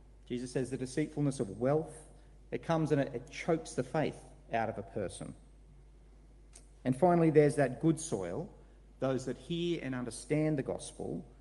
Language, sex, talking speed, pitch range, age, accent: English, male, 160 wpm, 125-165 Hz, 40-59, Australian